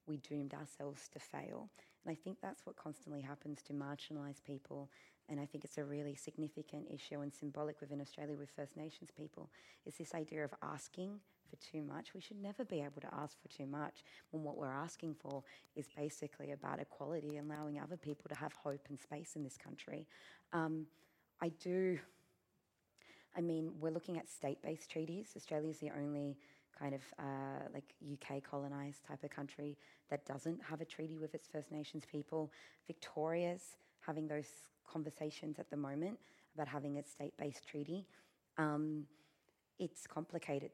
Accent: Australian